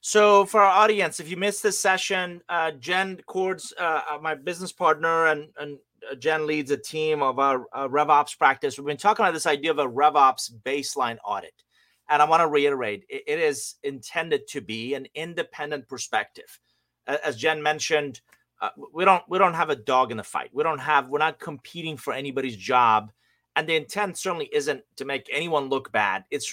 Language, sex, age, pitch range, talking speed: English, male, 30-49, 150-205 Hz, 195 wpm